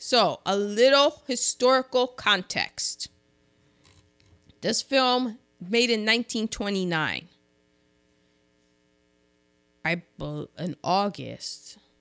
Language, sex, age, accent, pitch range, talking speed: English, female, 20-39, American, 155-235 Hz, 70 wpm